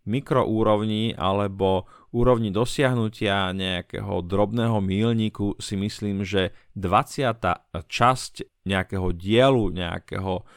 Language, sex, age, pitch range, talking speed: Slovak, male, 40-59, 95-120 Hz, 85 wpm